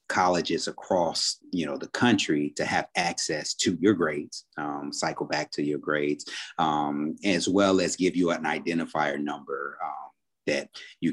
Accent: American